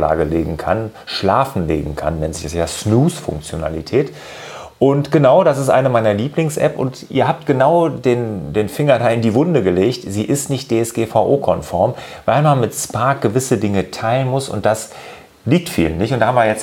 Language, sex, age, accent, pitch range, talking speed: German, male, 30-49, German, 100-135 Hz, 185 wpm